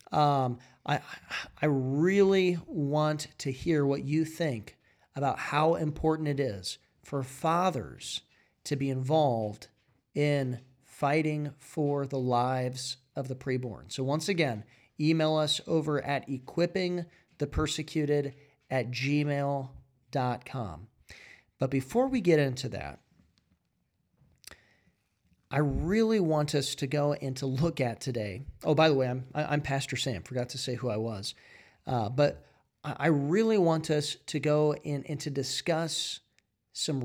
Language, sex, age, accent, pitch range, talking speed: English, male, 40-59, American, 130-155 Hz, 130 wpm